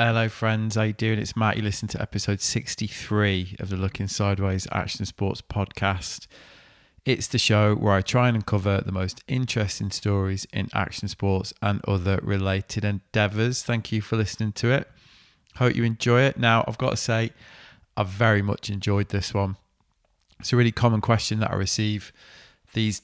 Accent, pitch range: British, 100-115 Hz